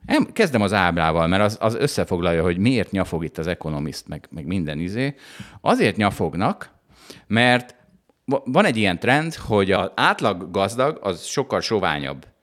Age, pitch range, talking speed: 50-69, 85-125 Hz, 155 wpm